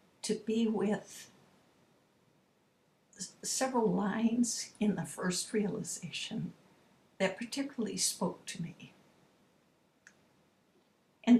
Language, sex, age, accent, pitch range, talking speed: English, female, 60-79, American, 185-220 Hz, 80 wpm